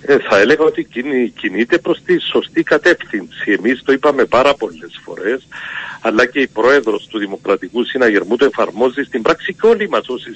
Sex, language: male, Greek